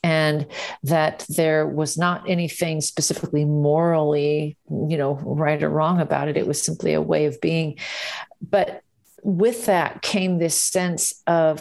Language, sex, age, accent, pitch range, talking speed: English, female, 40-59, American, 155-180 Hz, 150 wpm